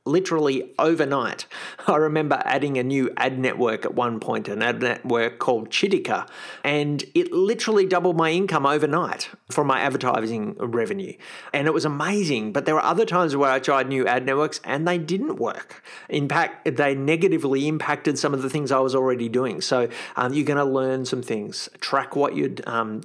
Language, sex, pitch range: English, male, 125-155 Hz